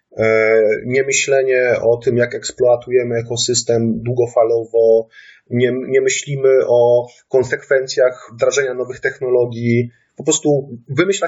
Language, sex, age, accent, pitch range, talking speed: English, male, 30-49, Polish, 125-175 Hz, 100 wpm